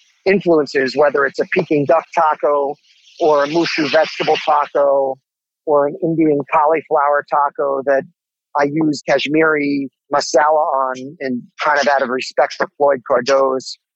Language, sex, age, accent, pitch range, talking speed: English, male, 40-59, American, 135-155 Hz, 140 wpm